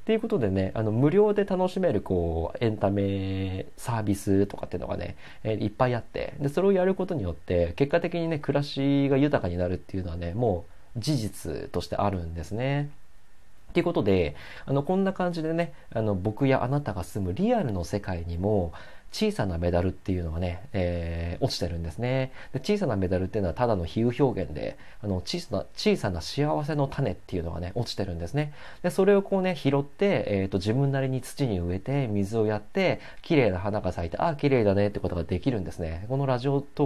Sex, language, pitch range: male, Japanese, 95-140 Hz